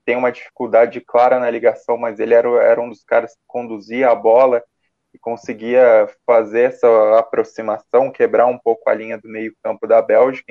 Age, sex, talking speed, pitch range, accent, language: 20-39, male, 175 wpm, 110-135 Hz, Brazilian, Portuguese